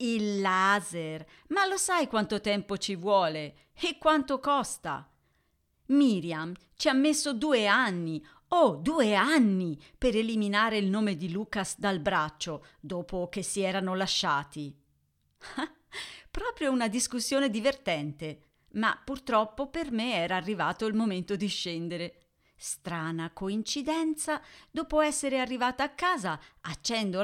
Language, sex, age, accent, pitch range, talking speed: Italian, female, 40-59, native, 175-265 Hz, 125 wpm